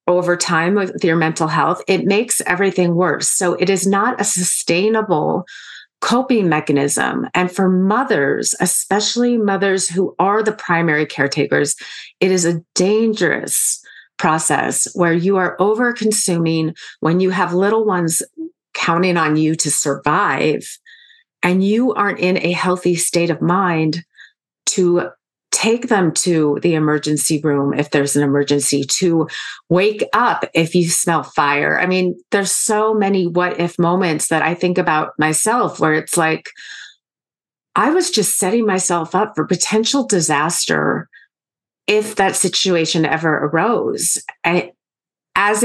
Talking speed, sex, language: 135 wpm, female, English